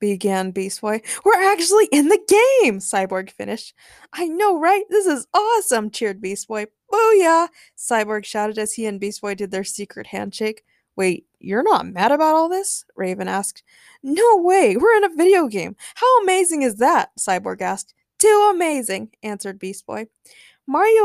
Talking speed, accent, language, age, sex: 170 wpm, American, English, 20-39, female